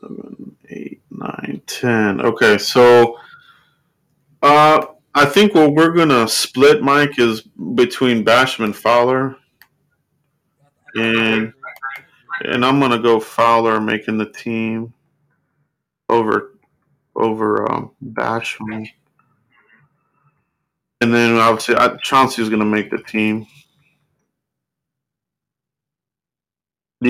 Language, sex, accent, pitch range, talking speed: English, male, American, 115-145 Hz, 90 wpm